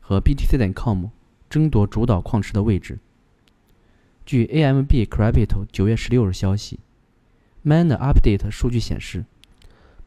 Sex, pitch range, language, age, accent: male, 100-125 Hz, Chinese, 20-39, native